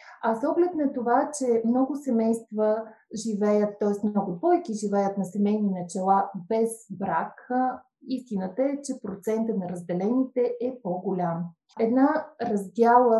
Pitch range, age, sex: 185-235 Hz, 30-49, female